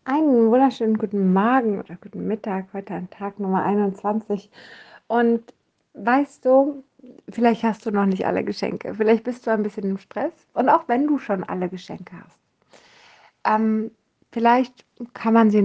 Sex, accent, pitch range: female, German, 190-230 Hz